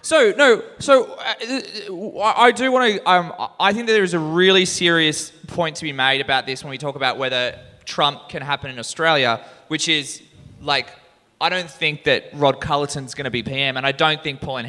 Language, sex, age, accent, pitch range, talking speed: English, male, 20-39, Australian, 130-170 Hz, 210 wpm